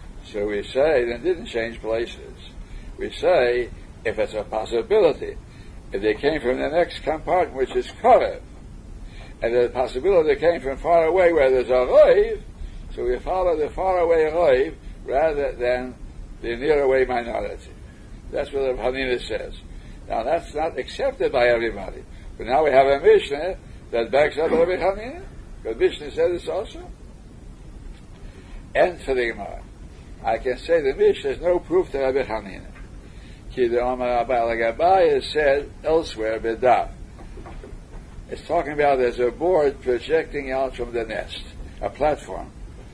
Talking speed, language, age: 150 wpm, English, 60-79